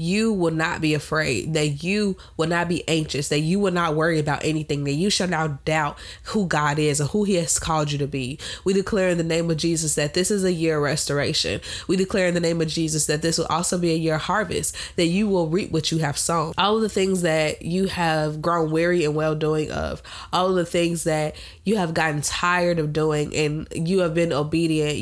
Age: 20-39